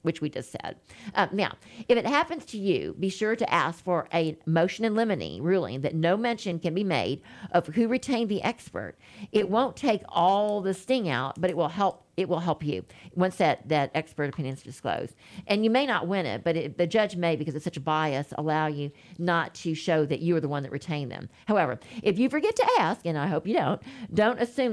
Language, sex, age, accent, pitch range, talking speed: English, female, 50-69, American, 155-200 Hz, 235 wpm